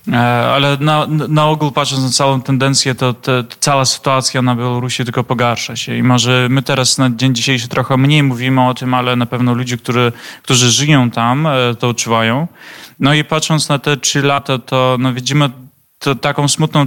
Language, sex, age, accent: Polish, male, 20-39, native